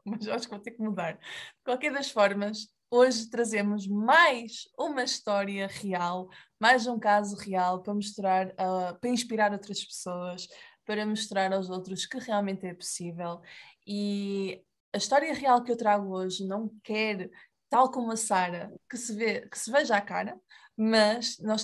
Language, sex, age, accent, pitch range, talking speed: Portuguese, female, 20-39, Brazilian, 195-245 Hz, 165 wpm